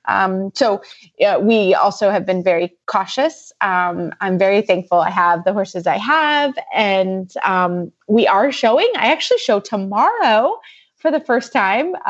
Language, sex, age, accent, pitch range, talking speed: English, female, 20-39, American, 190-230 Hz, 160 wpm